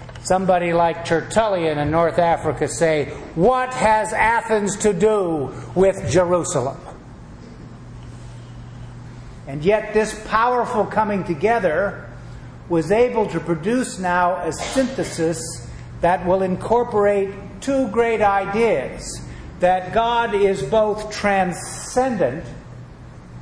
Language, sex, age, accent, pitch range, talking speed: English, male, 50-69, American, 160-205 Hz, 95 wpm